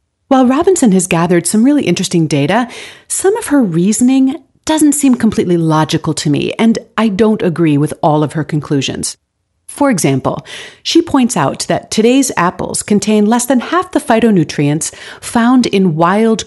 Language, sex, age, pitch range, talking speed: English, female, 40-59, 170-245 Hz, 160 wpm